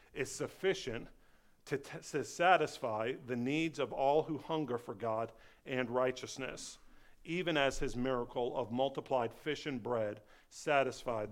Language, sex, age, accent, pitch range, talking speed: English, male, 50-69, American, 110-130 Hz, 140 wpm